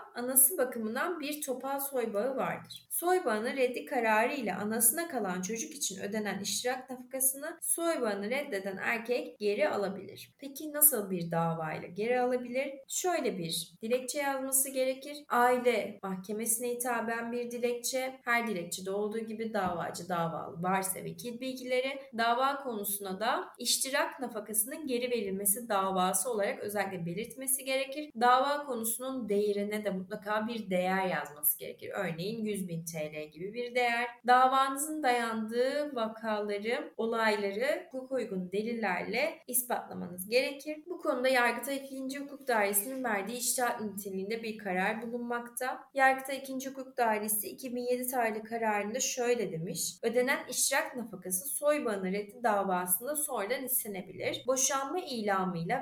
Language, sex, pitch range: Turkish, female, 205-260 Hz